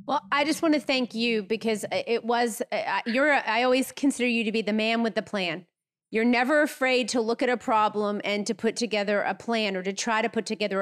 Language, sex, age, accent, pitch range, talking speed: English, female, 30-49, American, 200-245 Hz, 235 wpm